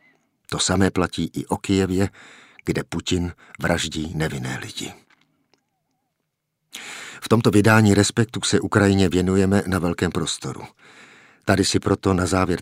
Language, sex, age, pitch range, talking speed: Czech, male, 50-69, 85-100 Hz, 125 wpm